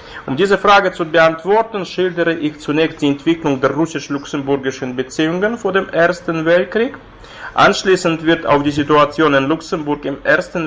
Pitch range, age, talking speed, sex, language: 135-165 Hz, 30-49, 145 wpm, male, German